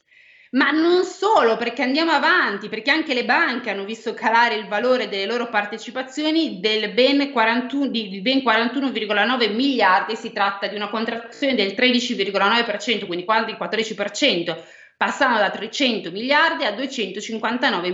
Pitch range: 205-270 Hz